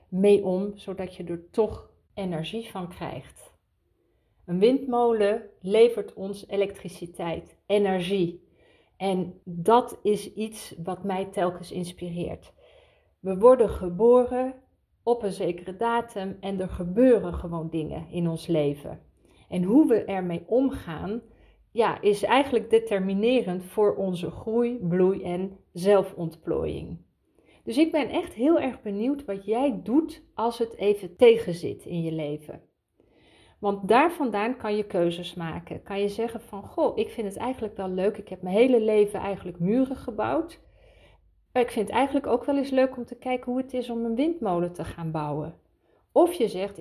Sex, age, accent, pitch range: female, 40-59, Dutch, 180-235 Hz